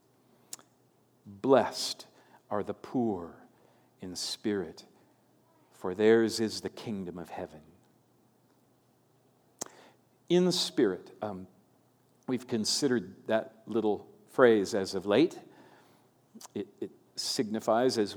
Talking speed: 95 wpm